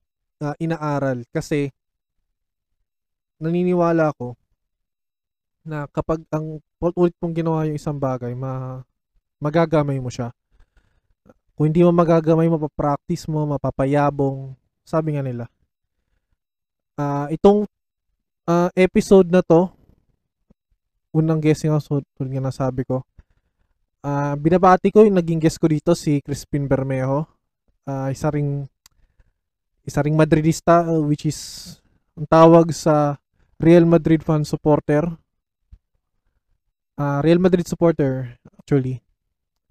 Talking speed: 100 wpm